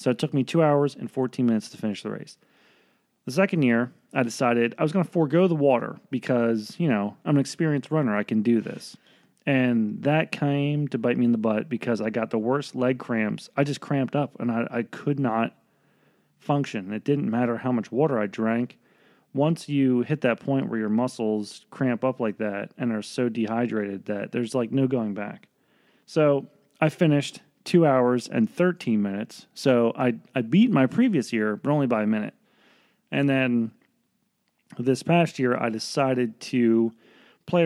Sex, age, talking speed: male, 30-49, 195 wpm